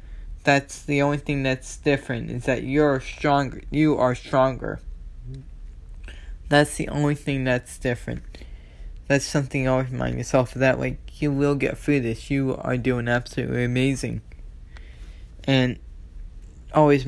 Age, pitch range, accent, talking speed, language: 20-39, 110-140 Hz, American, 140 wpm, English